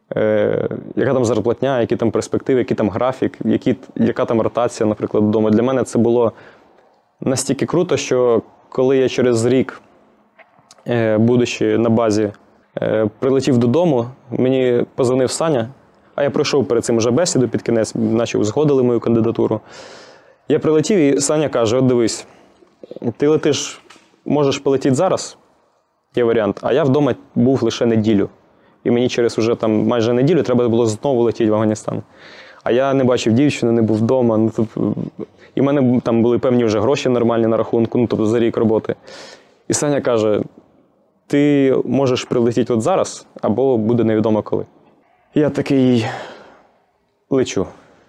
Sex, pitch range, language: male, 110-130 Hz, Russian